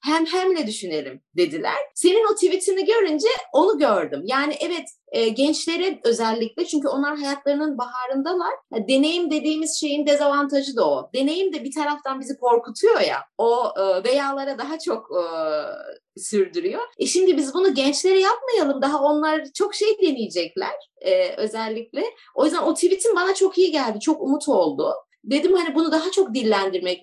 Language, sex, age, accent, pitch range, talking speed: Turkish, female, 30-49, native, 240-330 Hz, 155 wpm